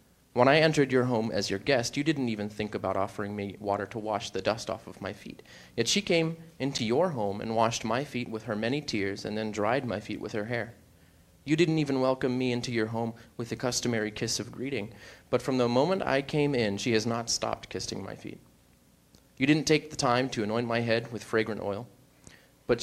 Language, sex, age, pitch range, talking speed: English, male, 30-49, 105-130 Hz, 230 wpm